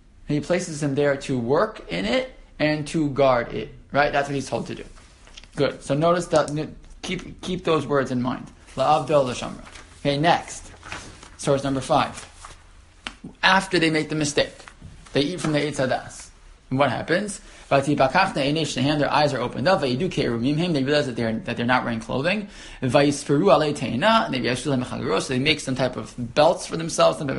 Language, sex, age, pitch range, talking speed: English, male, 20-39, 125-160 Hz, 160 wpm